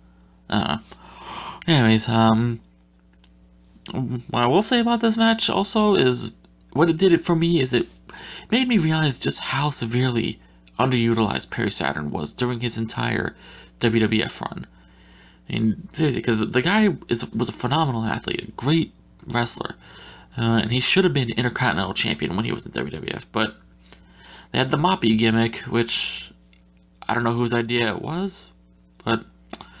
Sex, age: male, 20-39